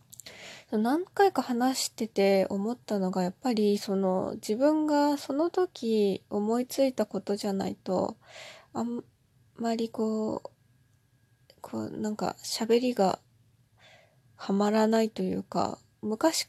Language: Japanese